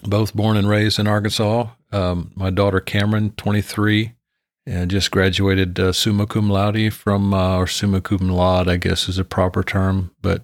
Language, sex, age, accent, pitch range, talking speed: English, male, 40-59, American, 95-110 Hz, 180 wpm